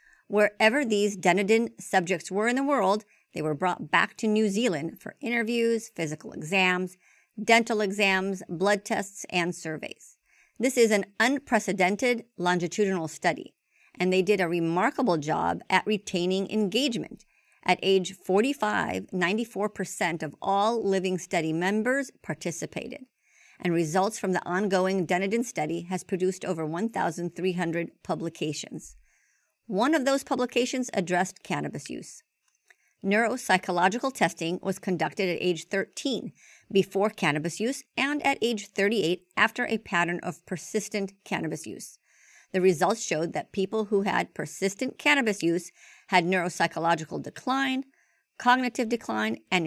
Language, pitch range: English, 180-225 Hz